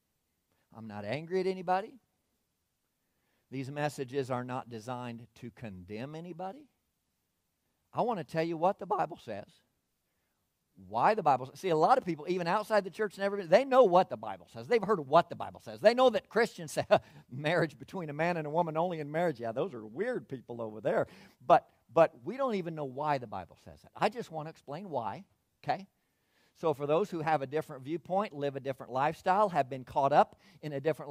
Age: 50-69